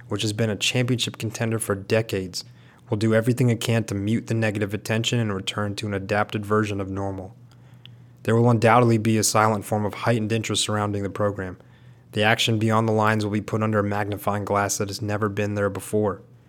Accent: American